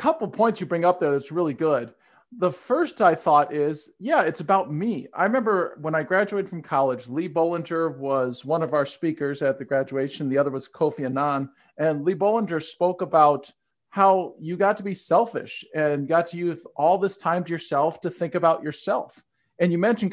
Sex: male